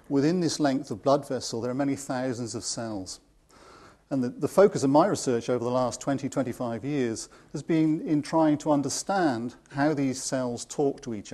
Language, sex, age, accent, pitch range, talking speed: English, male, 40-59, British, 120-150 Hz, 195 wpm